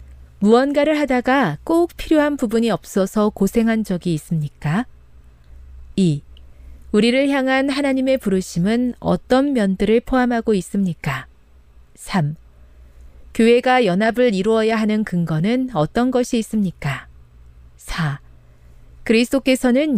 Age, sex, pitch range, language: 40-59, female, 145-235 Hz, Korean